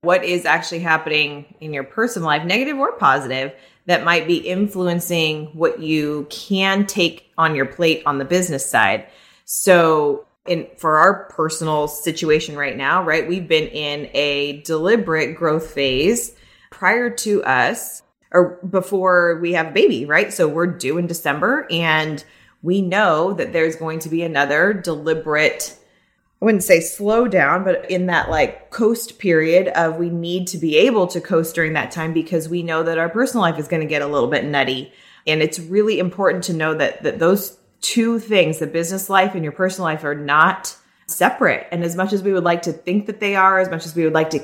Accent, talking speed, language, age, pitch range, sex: American, 195 wpm, English, 20-39, 155-190 Hz, female